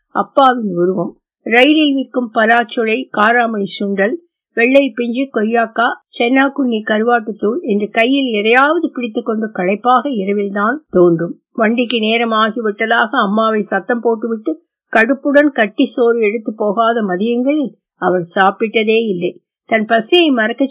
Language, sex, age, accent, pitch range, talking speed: Tamil, female, 50-69, native, 210-270 Hz, 105 wpm